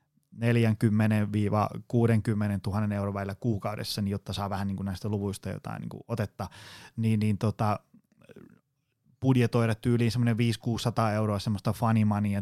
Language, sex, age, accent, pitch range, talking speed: Finnish, male, 20-39, native, 105-125 Hz, 125 wpm